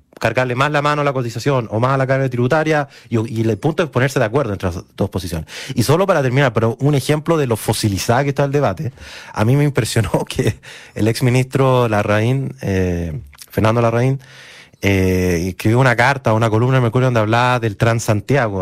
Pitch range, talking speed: 110-145 Hz, 200 wpm